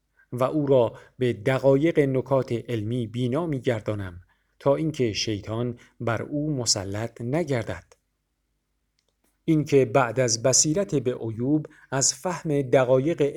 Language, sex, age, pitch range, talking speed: Persian, male, 50-69, 110-145 Hz, 110 wpm